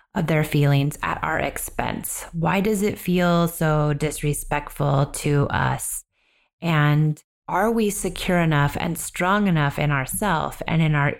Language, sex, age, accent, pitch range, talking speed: English, female, 30-49, American, 145-170 Hz, 145 wpm